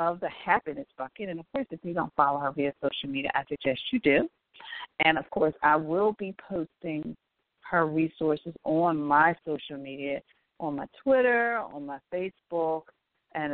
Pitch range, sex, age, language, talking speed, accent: 150-230 Hz, female, 40-59, English, 175 wpm, American